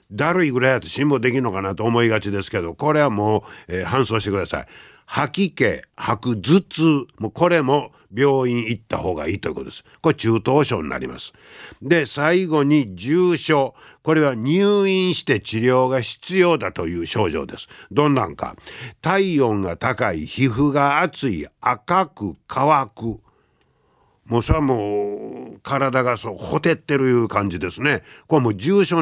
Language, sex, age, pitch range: Japanese, male, 50-69, 110-160 Hz